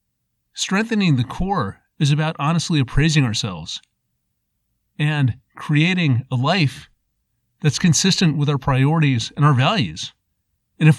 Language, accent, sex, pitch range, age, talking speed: English, American, male, 115-160 Hz, 40-59, 120 wpm